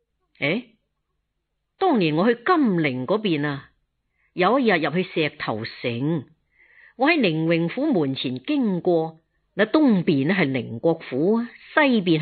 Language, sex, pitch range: Chinese, female, 140-210 Hz